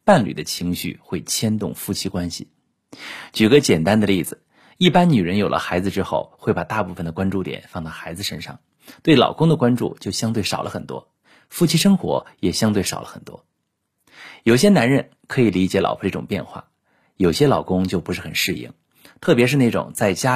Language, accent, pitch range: Chinese, native, 95-130 Hz